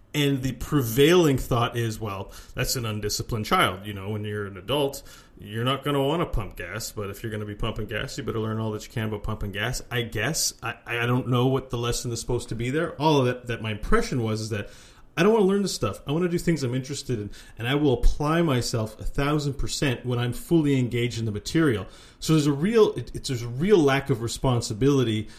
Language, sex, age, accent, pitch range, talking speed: English, male, 30-49, American, 110-140 Hz, 250 wpm